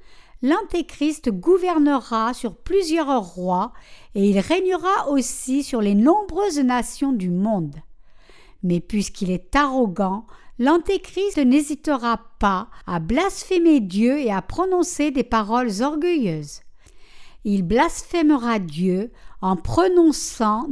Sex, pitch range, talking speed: female, 205-315 Hz, 105 wpm